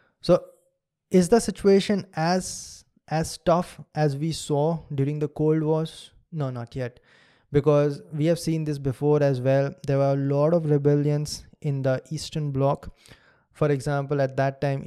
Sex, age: male, 20-39